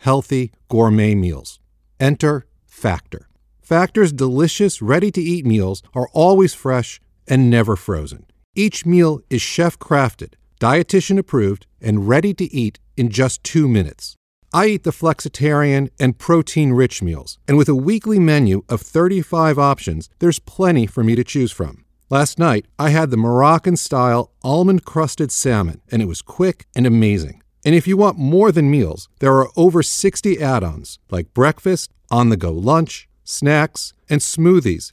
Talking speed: 145 wpm